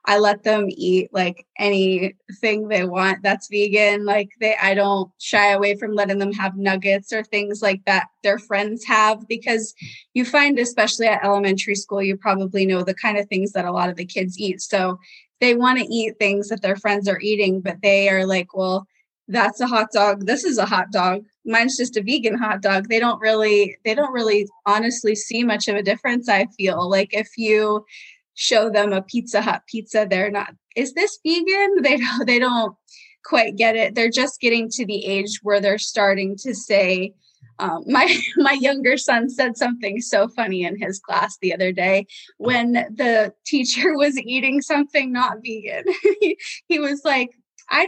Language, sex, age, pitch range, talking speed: English, female, 20-39, 195-245 Hz, 190 wpm